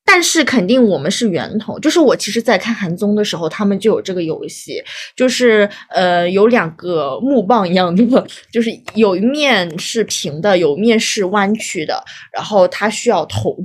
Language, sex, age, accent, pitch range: Chinese, female, 20-39, native, 190-245 Hz